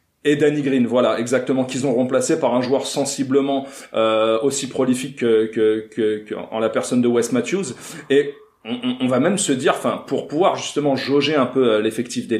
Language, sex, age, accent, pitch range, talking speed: French, male, 40-59, French, 120-145 Hz, 205 wpm